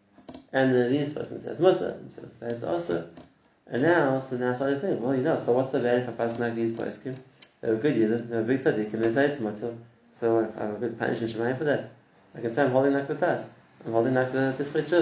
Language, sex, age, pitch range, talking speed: English, male, 30-49, 115-135 Hz, 275 wpm